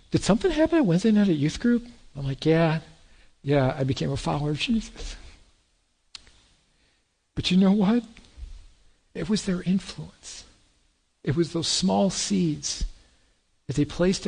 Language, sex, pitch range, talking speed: English, male, 140-200 Hz, 150 wpm